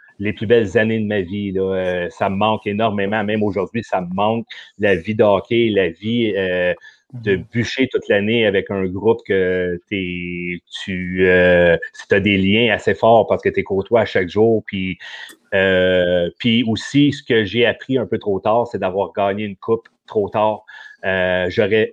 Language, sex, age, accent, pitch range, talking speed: French, male, 40-59, Canadian, 95-115 Hz, 185 wpm